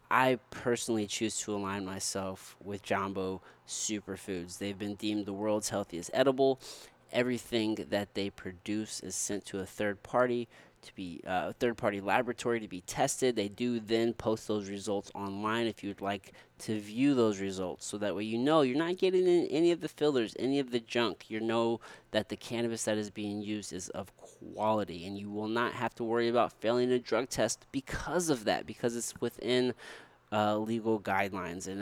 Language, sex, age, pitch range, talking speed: English, male, 20-39, 100-125 Hz, 190 wpm